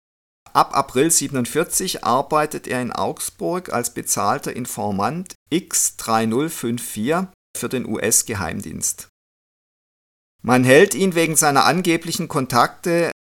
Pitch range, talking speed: 110-150 Hz, 95 wpm